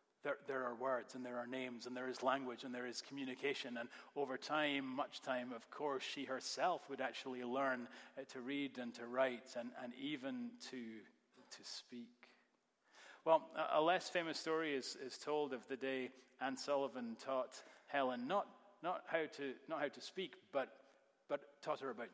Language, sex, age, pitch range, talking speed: English, male, 30-49, 125-140 Hz, 185 wpm